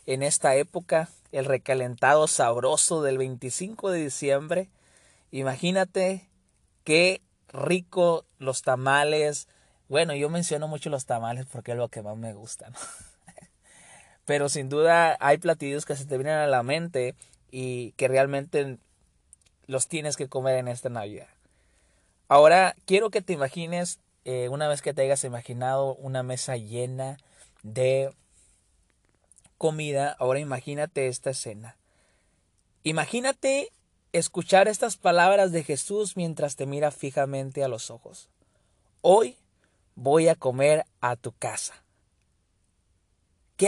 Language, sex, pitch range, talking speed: Spanish, male, 120-165 Hz, 125 wpm